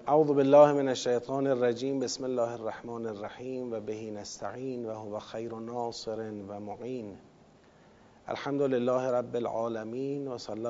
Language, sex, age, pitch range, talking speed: Persian, male, 40-59, 115-130 Hz, 110 wpm